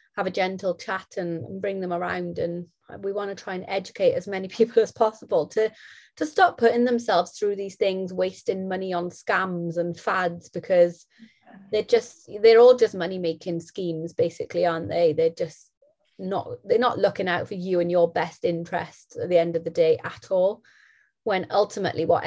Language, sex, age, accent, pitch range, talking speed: English, female, 30-49, British, 175-230 Hz, 190 wpm